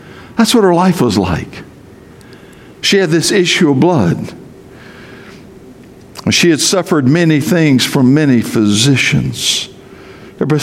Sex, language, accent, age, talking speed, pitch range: male, English, American, 60-79, 120 wpm, 130-160 Hz